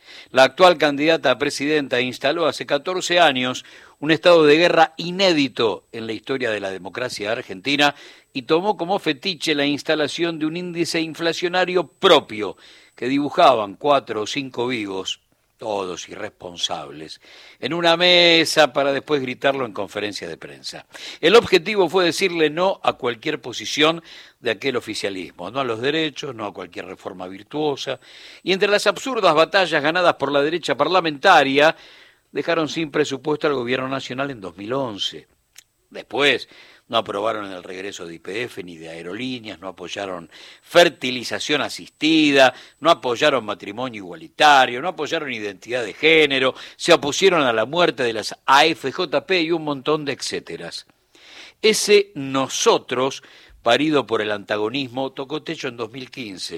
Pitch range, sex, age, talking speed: 130-170 Hz, male, 60-79, 140 wpm